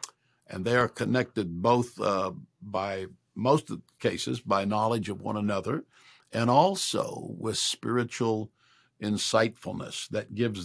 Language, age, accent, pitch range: English, 60-79, American, 100-125 Hz